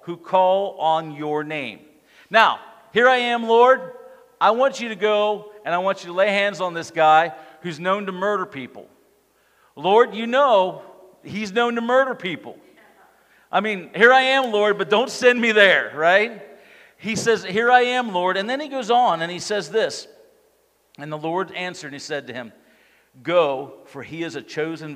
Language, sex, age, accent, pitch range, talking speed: English, male, 50-69, American, 160-220 Hz, 190 wpm